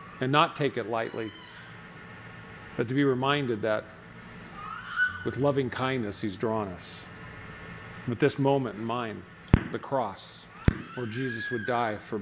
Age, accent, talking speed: 50-69, American, 135 wpm